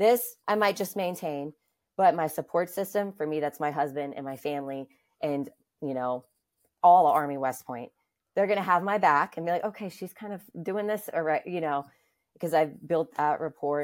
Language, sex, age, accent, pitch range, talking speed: English, female, 20-39, American, 145-185 Hz, 200 wpm